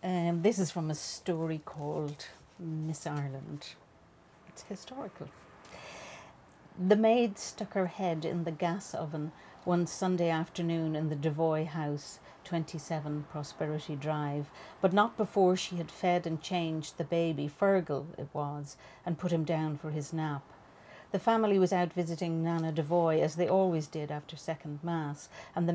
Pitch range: 150-175 Hz